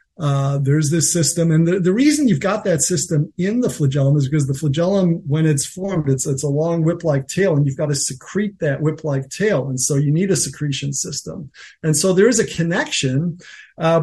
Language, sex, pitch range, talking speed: English, male, 145-175 Hz, 215 wpm